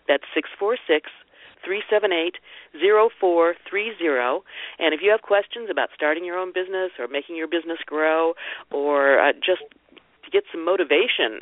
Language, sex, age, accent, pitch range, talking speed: English, female, 50-69, American, 145-210 Hz, 125 wpm